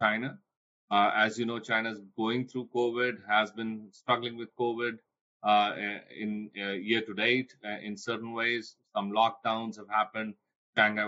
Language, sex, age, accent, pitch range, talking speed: English, male, 30-49, Indian, 105-125 Hz, 155 wpm